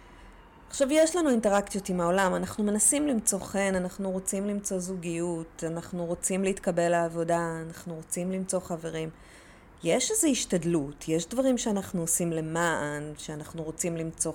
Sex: female